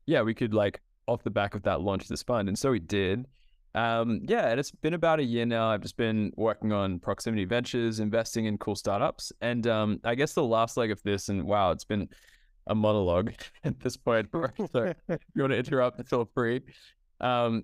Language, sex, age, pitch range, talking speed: English, male, 20-39, 100-120 Hz, 220 wpm